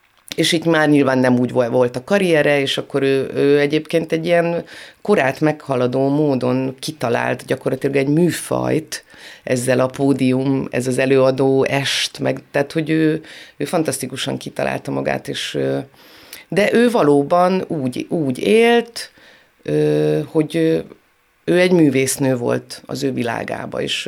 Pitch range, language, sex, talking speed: 125-165 Hz, Hungarian, female, 130 wpm